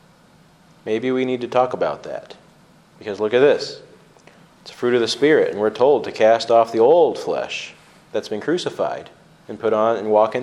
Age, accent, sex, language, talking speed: 30-49, American, male, English, 195 wpm